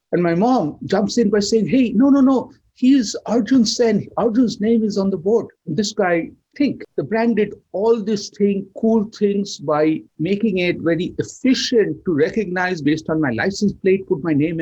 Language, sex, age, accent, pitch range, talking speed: English, male, 60-79, Indian, 175-220 Hz, 190 wpm